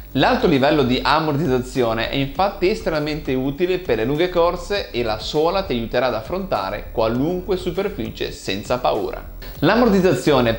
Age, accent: 30-49, native